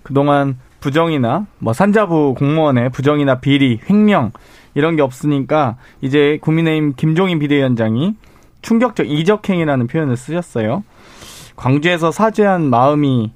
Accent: native